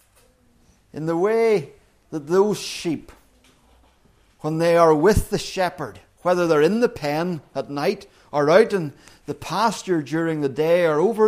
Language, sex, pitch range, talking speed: English, male, 130-185 Hz, 155 wpm